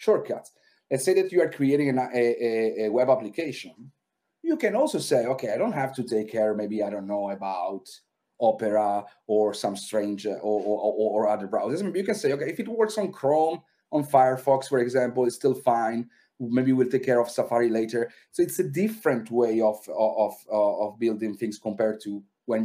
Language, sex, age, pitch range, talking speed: Polish, male, 30-49, 115-145 Hz, 195 wpm